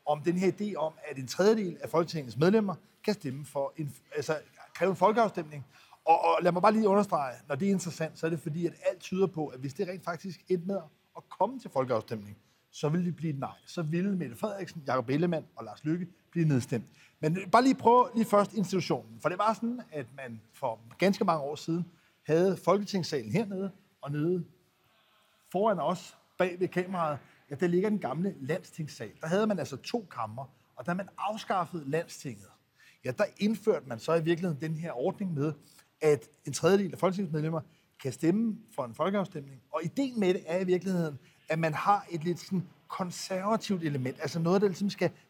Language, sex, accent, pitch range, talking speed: Danish, male, native, 155-195 Hz, 200 wpm